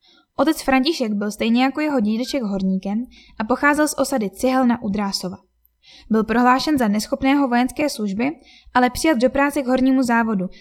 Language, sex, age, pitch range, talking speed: Czech, female, 10-29, 220-270 Hz, 155 wpm